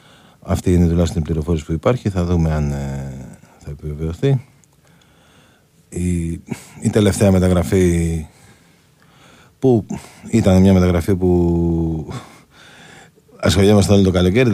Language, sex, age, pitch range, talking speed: Greek, male, 40-59, 80-110 Hz, 105 wpm